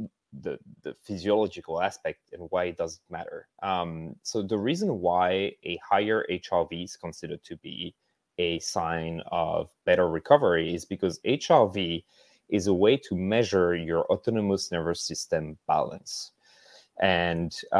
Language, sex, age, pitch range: English, male, 30-49, 85-105 Hz